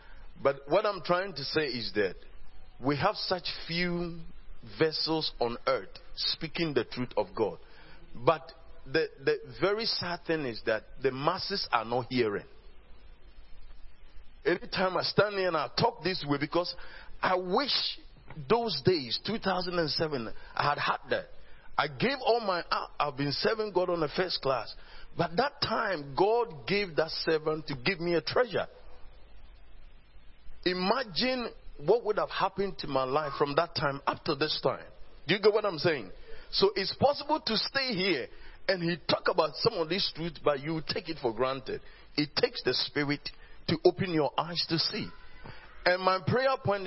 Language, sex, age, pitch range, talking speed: English, male, 40-59, 150-205 Hz, 170 wpm